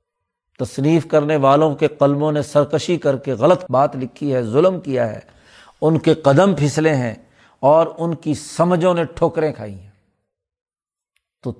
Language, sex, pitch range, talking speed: Urdu, male, 120-155 Hz, 155 wpm